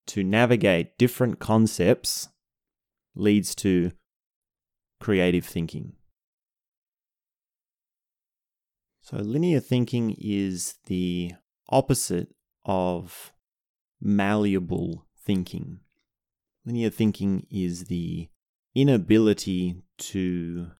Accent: Australian